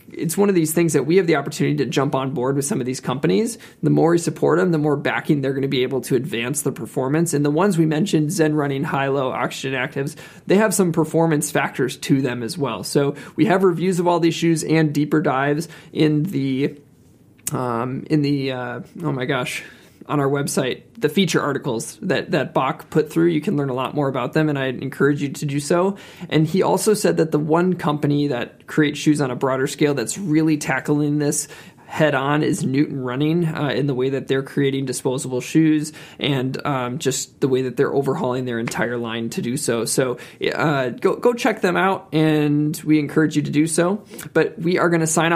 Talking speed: 225 wpm